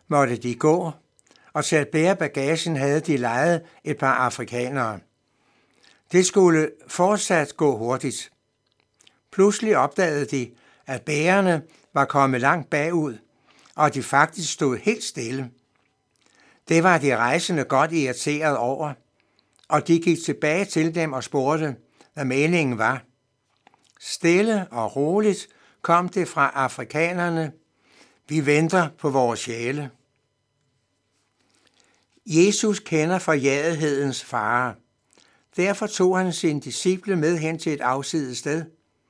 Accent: native